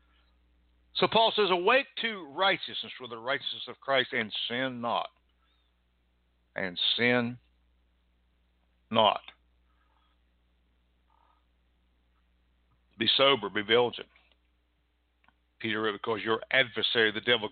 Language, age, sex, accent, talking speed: English, 60-79, male, American, 90 wpm